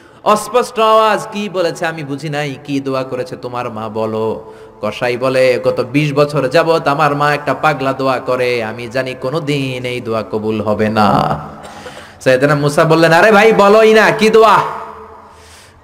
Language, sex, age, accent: Bengali, male, 30-49, native